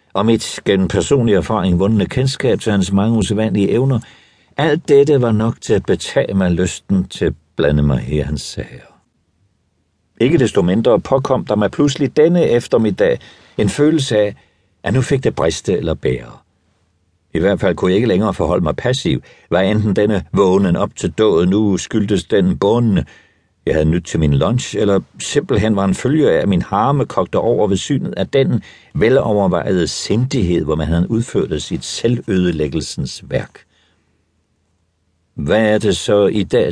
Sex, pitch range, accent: male, 90-125 Hz, native